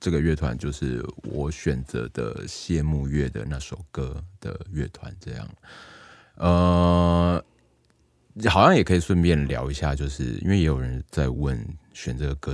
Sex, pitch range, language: male, 70-85 Hz, Chinese